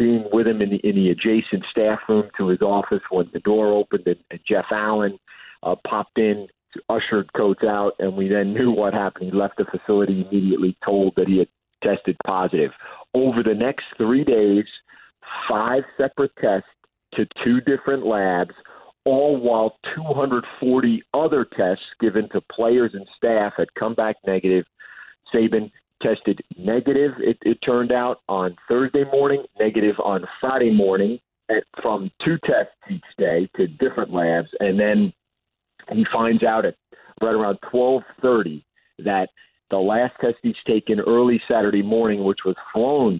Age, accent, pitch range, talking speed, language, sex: 50-69, American, 100-120 Hz, 155 wpm, English, male